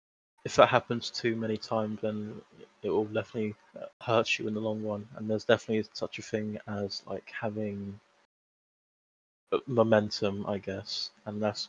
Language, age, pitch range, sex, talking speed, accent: English, 20-39, 105-115 Hz, male, 155 wpm, British